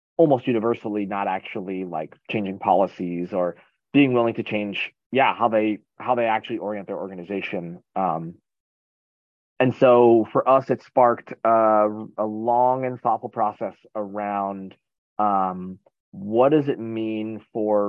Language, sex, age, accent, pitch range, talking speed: English, male, 30-49, American, 100-120 Hz, 140 wpm